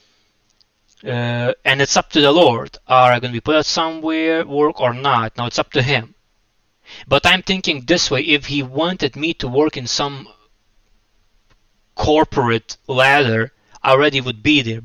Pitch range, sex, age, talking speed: 105-140 Hz, male, 20-39, 175 wpm